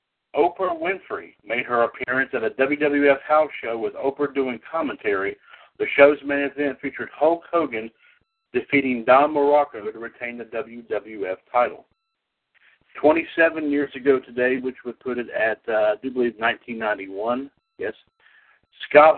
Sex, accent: male, American